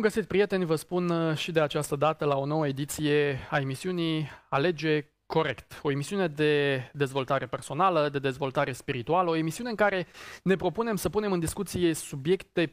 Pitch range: 145-185 Hz